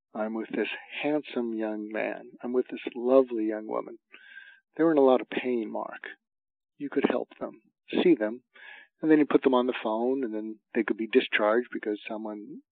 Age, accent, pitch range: 60-79, American, 110-150 Hz